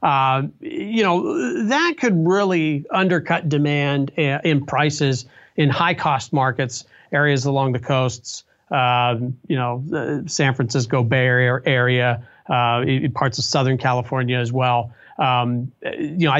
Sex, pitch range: male, 130-155 Hz